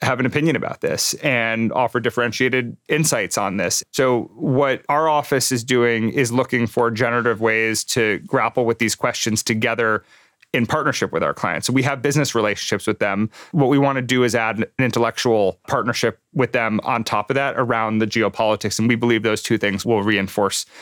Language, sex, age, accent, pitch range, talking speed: English, male, 30-49, American, 110-130 Hz, 195 wpm